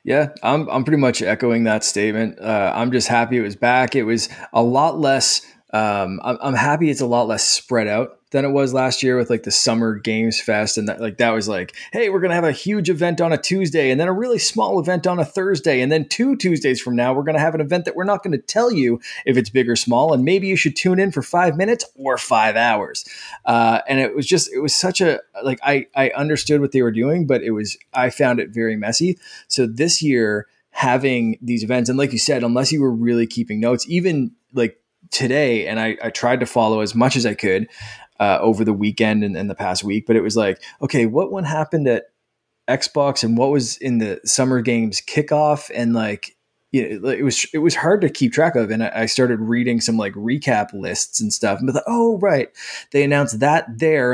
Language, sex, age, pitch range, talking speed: English, male, 20-39, 115-150 Hz, 240 wpm